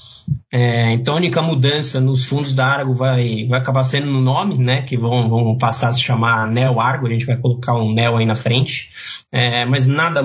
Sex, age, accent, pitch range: male, 20-39, Brazilian, 120-135 Hz